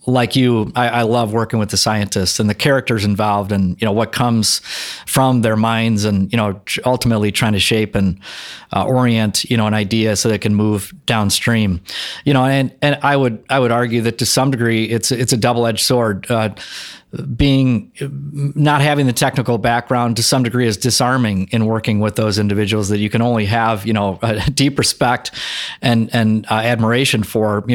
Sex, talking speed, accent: male, 195 wpm, American